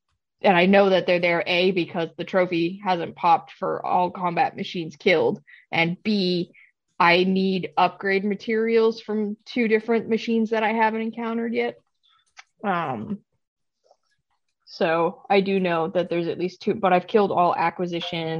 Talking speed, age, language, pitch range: 155 wpm, 20-39, English, 180-225 Hz